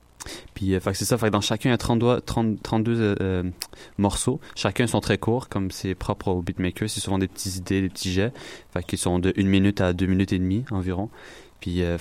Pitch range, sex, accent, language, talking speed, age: 95-110 Hz, male, French, French, 235 wpm, 20-39